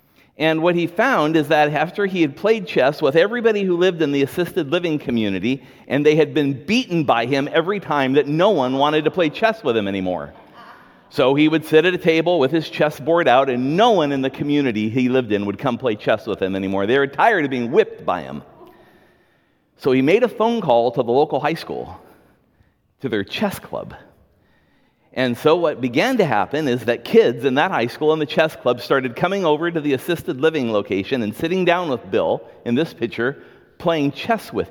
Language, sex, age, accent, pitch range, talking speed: English, male, 50-69, American, 120-165 Hz, 220 wpm